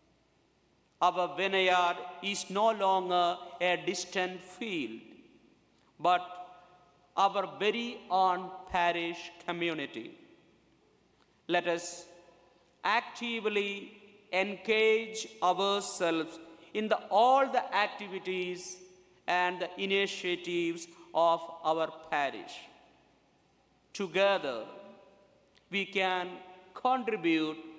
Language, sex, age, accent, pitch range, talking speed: English, male, 50-69, Indian, 175-210 Hz, 70 wpm